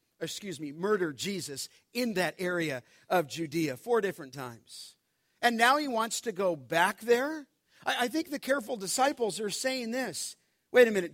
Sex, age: male, 50-69